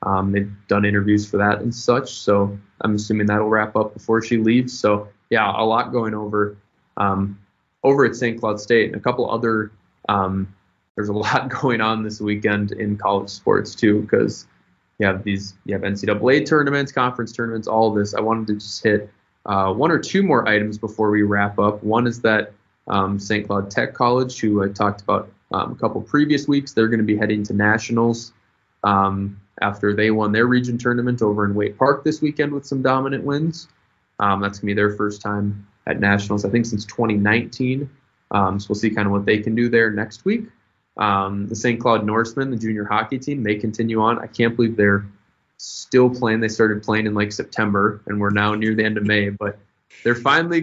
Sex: male